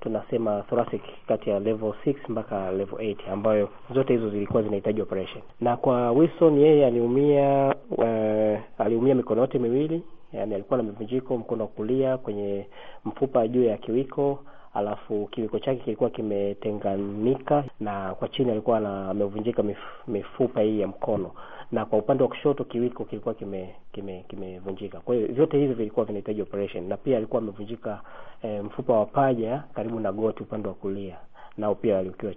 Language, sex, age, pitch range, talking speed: Swahili, male, 30-49, 105-130 Hz, 160 wpm